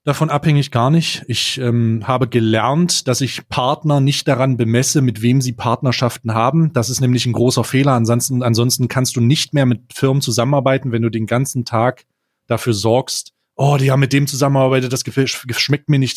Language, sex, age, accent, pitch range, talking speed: German, male, 30-49, German, 120-145 Hz, 195 wpm